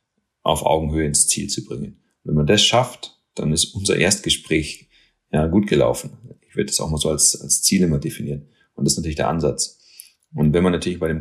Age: 30-49